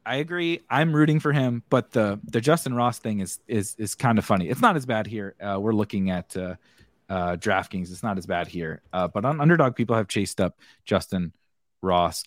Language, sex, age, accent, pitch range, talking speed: English, male, 30-49, American, 100-140 Hz, 220 wpm